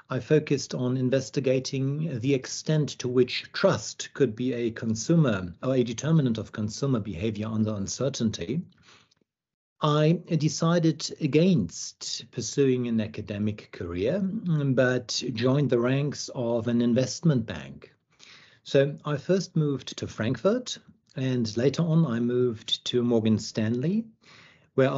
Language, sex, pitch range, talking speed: English, male, 115-145 Hz, 125 wpm